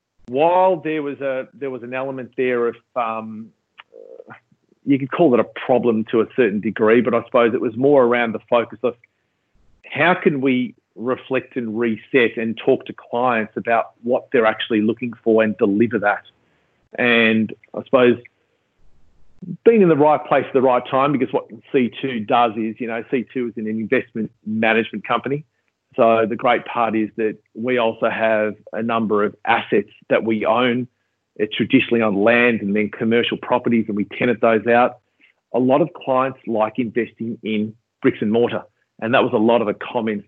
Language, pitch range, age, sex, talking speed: English, 110-130 Hz, 40-59, male, 185 wpm